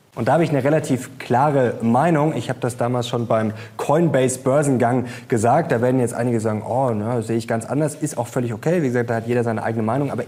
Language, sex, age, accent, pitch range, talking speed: German, male, 20-39, German, 120-140 Hz, 245 wpm